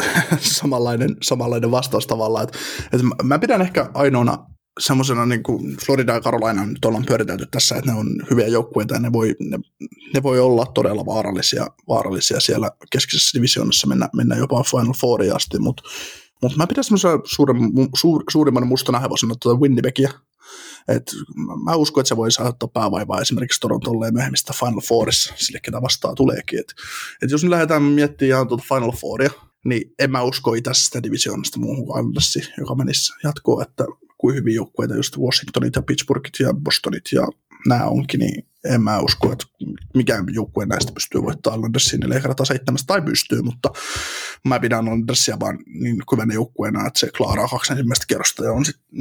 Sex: male